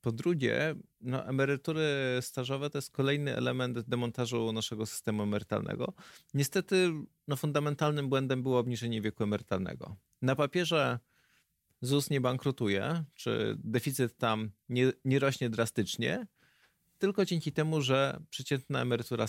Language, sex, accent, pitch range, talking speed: Polish, male, native, 120-150 Hz, 115 wpm